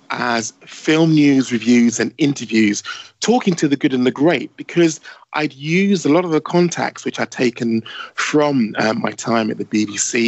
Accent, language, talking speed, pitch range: British, English, 180 wpm, 115-145 Hz